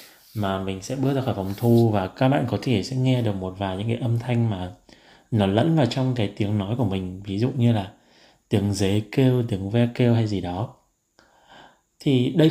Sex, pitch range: male, 100-130 Hz